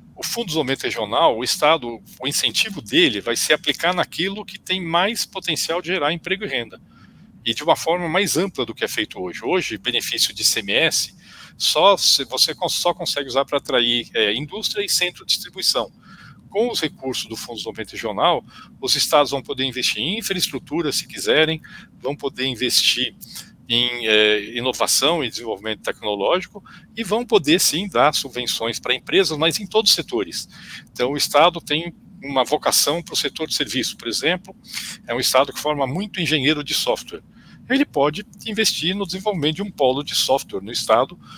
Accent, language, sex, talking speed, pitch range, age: Brazilian, Portuguese, male, 180 wpm, 130-190 Hz, 50-69